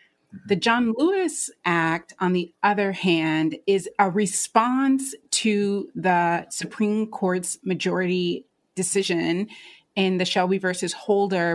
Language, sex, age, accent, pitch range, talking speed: English, female, 30-49, American, 175-230 Hz, 115 wpm